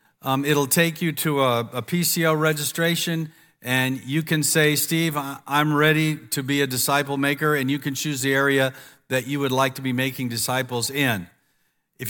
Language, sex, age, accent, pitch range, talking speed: English, male, 50-69, American, 115-150 Hz, 185 wpm